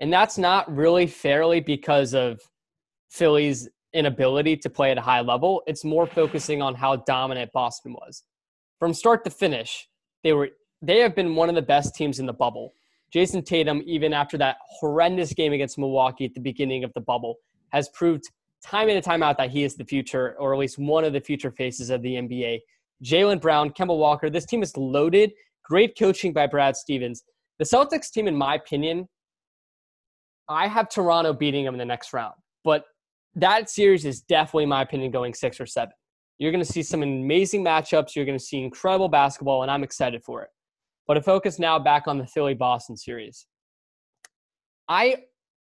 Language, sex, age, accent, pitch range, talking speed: English, male, 20-39, American, 135-175 Hz, 190 wpm